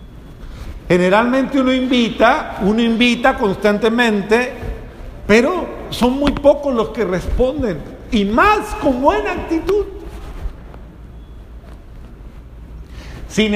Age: 50-69